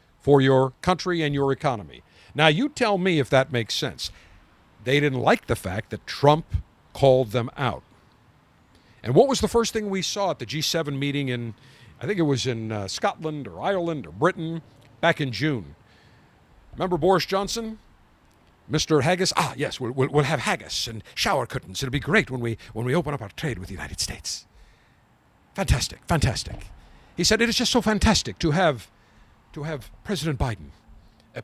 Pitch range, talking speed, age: 115-185 Hz, 185 wpm, 50-69